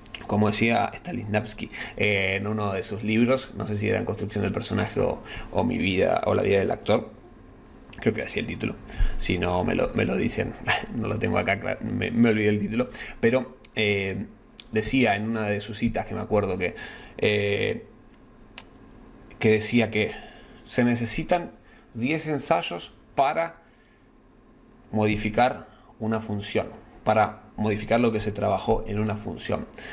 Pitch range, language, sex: 105-120 Hz, Spanish, male